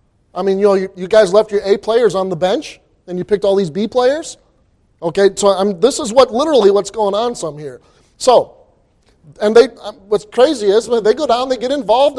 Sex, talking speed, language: male, 220 wpm, English